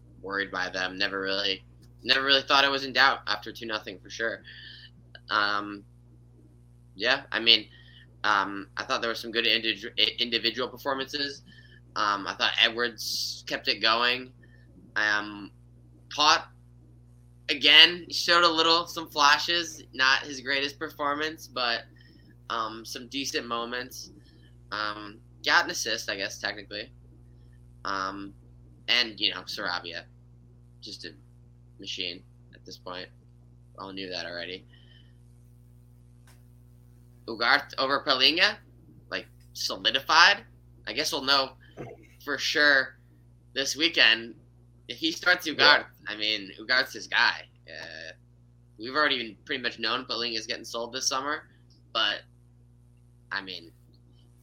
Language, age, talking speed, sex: English, 10-29, 125 wpm, male